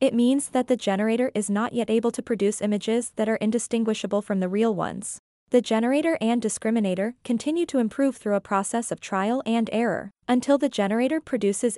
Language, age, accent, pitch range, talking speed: English, 20-39, American, 205-250 Hz, 190 wpm